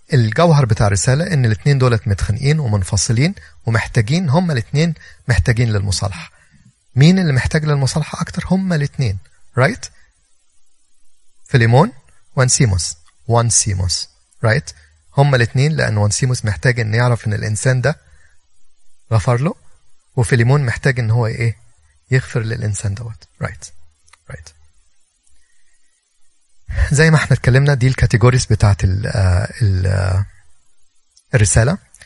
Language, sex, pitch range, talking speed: Arabic, male, 95-130 Hz, 110 wpm